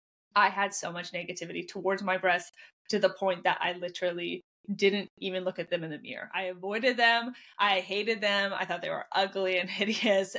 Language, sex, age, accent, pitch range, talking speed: English, female, 20-39, American, 185-215 Hz, 200 wpm